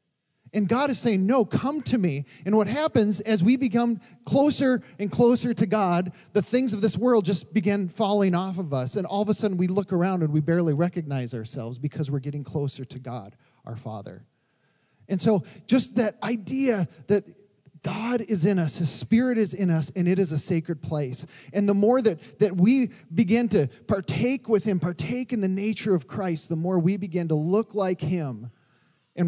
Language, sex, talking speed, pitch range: English, male, 200 wpm, 140-190 Hz